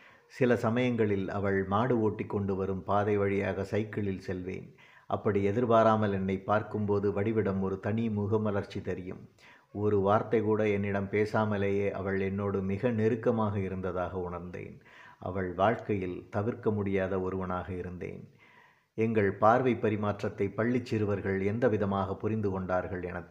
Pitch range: 95-110 Hz